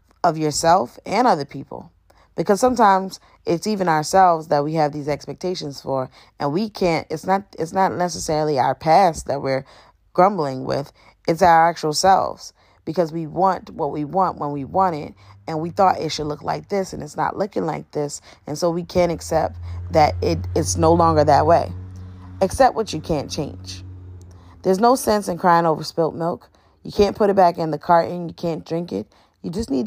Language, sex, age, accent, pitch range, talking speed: English, female, 10-29, American, 135-180 Hz, 195 wpm